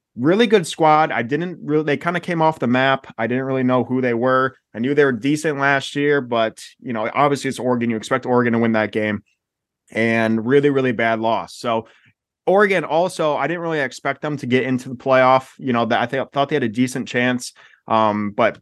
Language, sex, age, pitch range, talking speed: English, male, 20-39, 115-145 Hz, 230 wpm